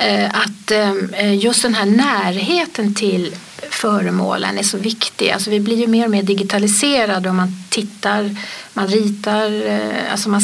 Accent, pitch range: Swedish, 200-235 Hz